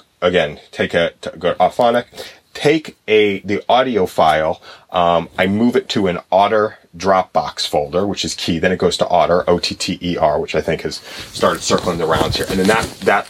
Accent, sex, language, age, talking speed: American, male, English, 30-49, 210 wpm